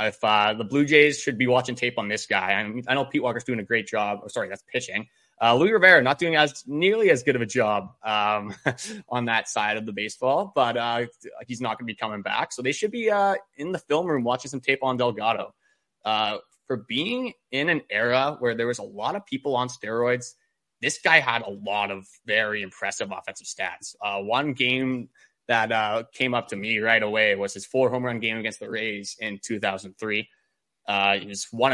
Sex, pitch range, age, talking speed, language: male, 110-140 Hz, 20-39, 225 wpm, English